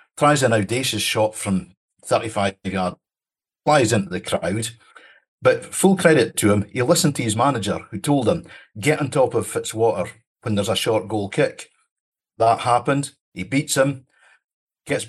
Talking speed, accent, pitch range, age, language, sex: 165 wpm, British, 105-135 Hz, 50-69, English, male